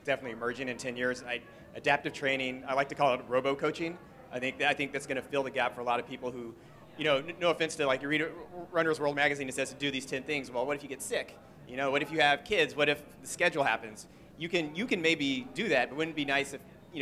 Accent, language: American, English